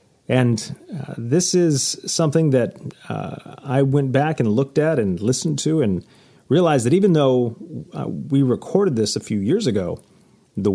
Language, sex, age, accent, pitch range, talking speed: English, male, 30-49, American, 115-155 Hz, 165 wpm